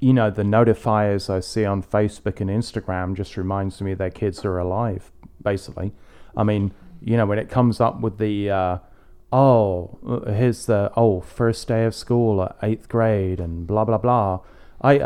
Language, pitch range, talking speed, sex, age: English, 100-125 Hz, 180 wpm, male, 30-49